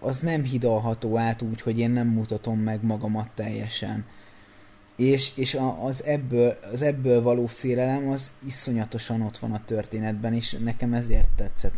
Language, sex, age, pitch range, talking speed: Hungarian, male, 20-39, 110-125 Hz, 150 wpm